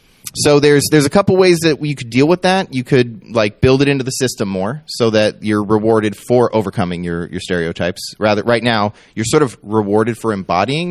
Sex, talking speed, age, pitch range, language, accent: male, 215 wpm, 30-49, 105-140 Hz, English, American